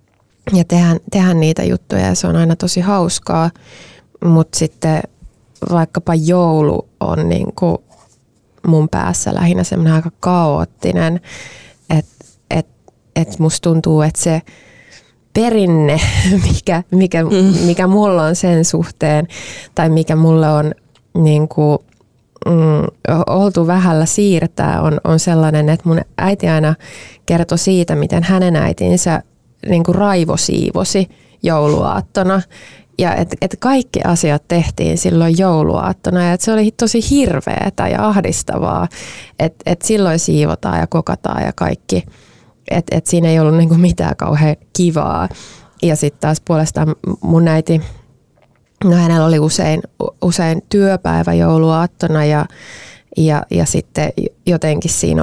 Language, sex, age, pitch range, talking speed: Finnish, female, 20-39, 150-175 Hz, 125 wpm